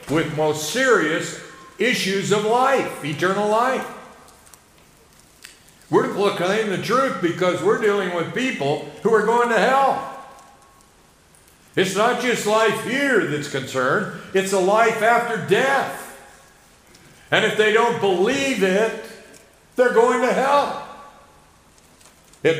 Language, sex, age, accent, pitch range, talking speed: English, male, 60-79, American, 150-235 Hz, 120 wpm